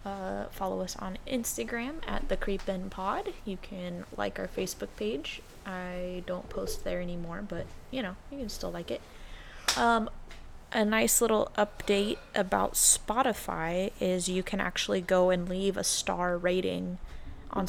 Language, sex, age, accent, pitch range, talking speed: English, female, 20-39, American, 180-220 Hz, 155 wpm